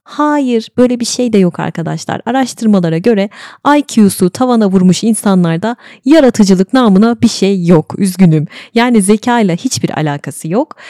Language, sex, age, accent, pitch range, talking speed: Turkish, female, 30-49, native, 170-240 Hz, 140 wpm